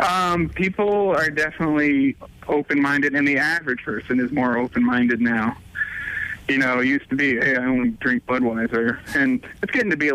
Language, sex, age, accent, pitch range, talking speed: English, male, 30-49, American, 120-160 Hz, 175 wpm